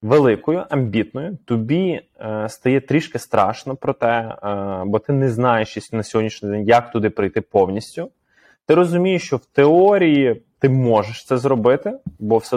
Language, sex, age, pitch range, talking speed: Ukrainian, male, 20-39, 105-150 Hz, 155 wpm